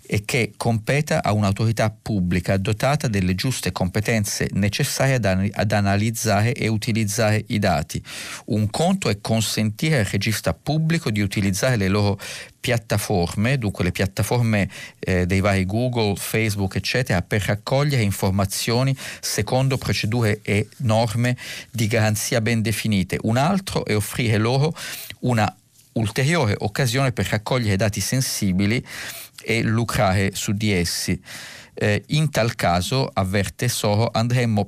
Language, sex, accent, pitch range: Italian, male, native, 105-125 Hz